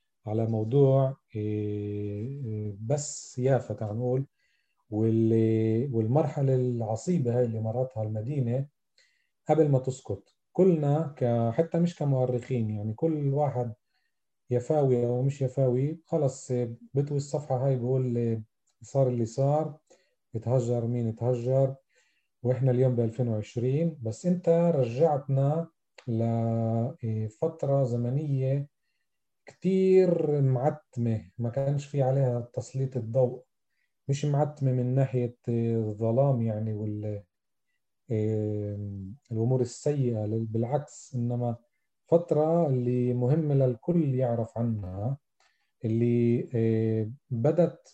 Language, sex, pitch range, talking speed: Arabic, male, 115-145 Hz, 90 wpm